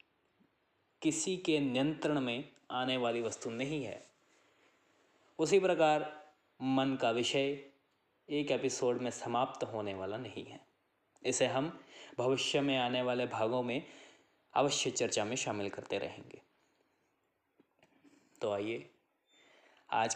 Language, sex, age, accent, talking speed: Hindi, male, 20-39, native, 115 wpm